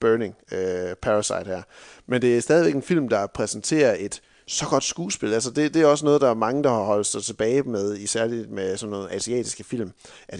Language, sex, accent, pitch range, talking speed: Danish, male, native, 100-135 Hz, 220 wpm